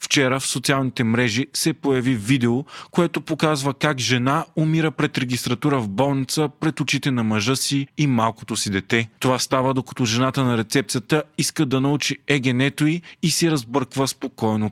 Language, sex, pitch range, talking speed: Bulgarian, male, 120-145 Hz, 160 wpm